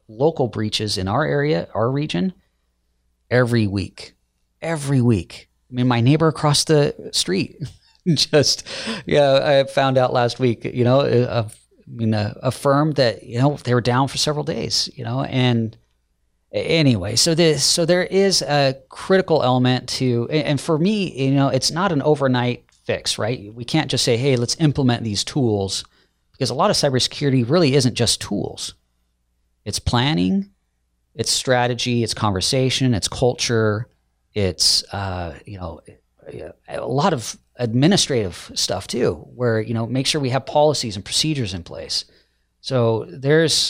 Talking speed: 155 wpm